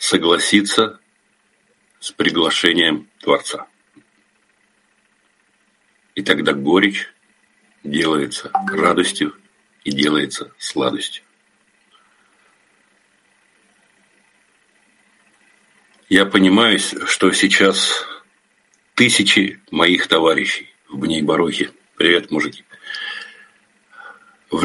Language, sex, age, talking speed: Russian, male, 60-79, 60 wpm